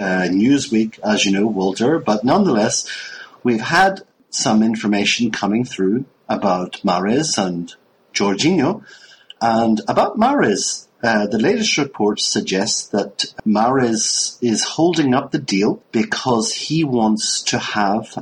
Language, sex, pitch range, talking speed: English, male, 100-120 Hz, 125 wpm